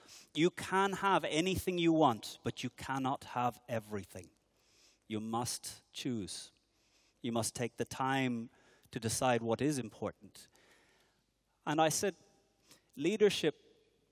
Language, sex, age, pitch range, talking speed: English, male, 30-49, 115-155 Hz, 120 wpm